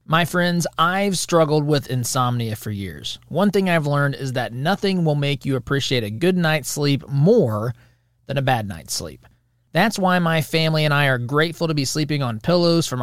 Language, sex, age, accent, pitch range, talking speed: English, male, 30-49, American, 125-170 Hz, 200 wpm